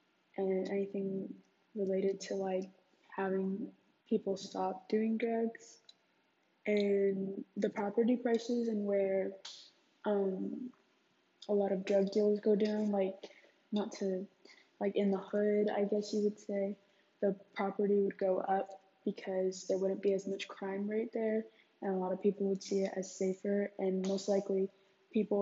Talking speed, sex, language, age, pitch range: 150 wpm, female, English, 20-39, 190-205 Hz